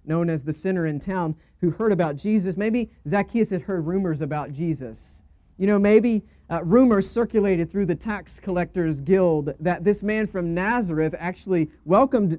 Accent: American